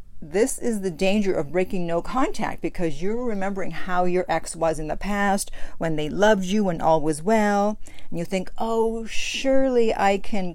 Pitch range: 165-205 Hz